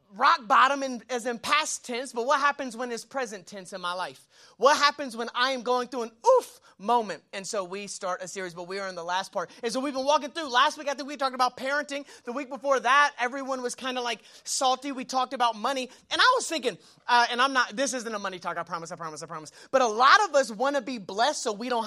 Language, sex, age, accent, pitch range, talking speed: English, male, 30-49, American, 230-290 Hz, 270 wpm